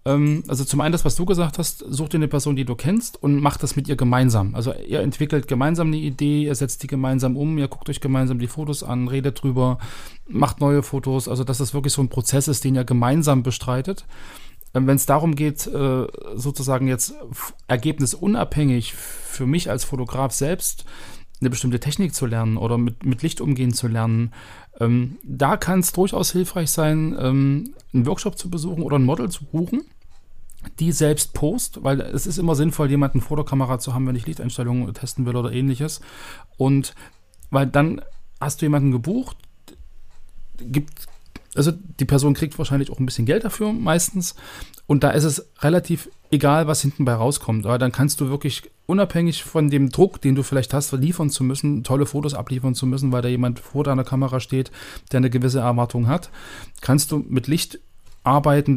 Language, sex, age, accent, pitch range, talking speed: German, male, 40-59, German, 130-150 Hz, 185 wpm